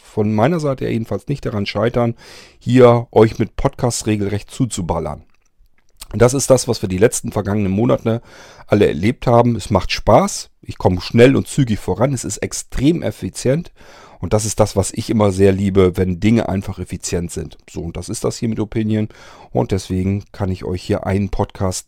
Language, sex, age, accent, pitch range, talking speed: German, male, 40-59, German, 90-115 Hz, 185 wpm